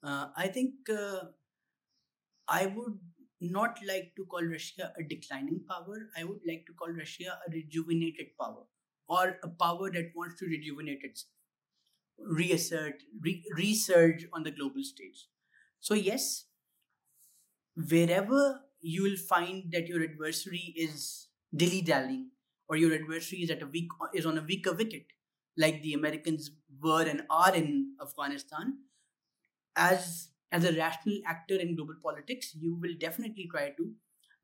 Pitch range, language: 155-185 Hz, English